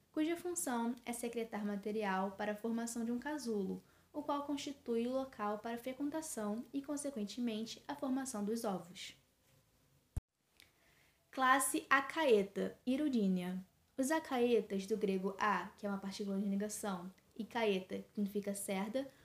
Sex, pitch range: female, 205-275 Hz